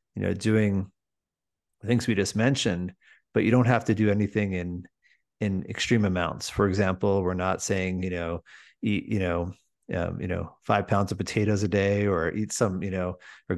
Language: English